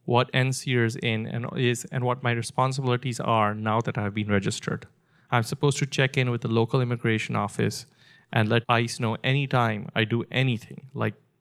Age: 30-49